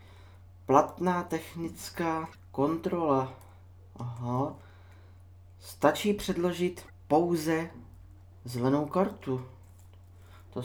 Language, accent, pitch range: Czech, native, 95-145 Hz